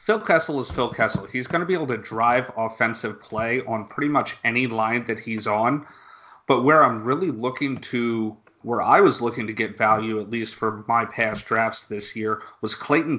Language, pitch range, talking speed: English, 110-130 Hz, 205 wpm